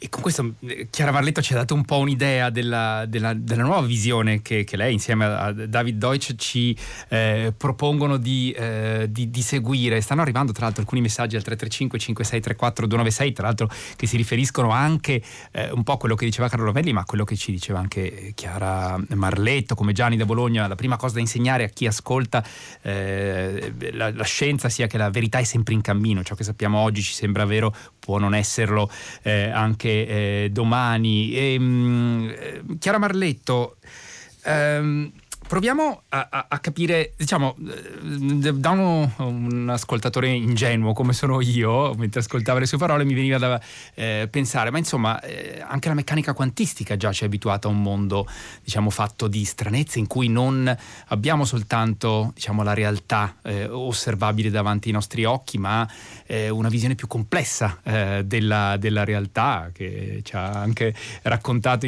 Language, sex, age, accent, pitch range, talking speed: Italian, male, 30-49, native, 105-130 Hz, 170 wpm